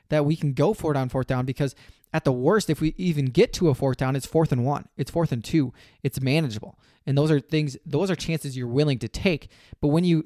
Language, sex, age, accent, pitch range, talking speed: English, male, 20-39, American, 130-160 Hz, 265 wpm